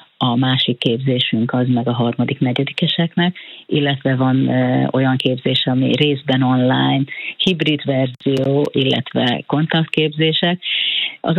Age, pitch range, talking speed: 40-59, 130-155 Hz, 100 wpm